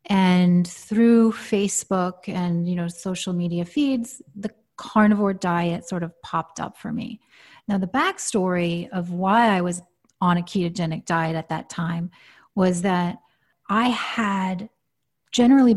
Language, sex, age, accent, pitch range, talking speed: English, female, 30-49, American, 175-210 Hz, 140 wpm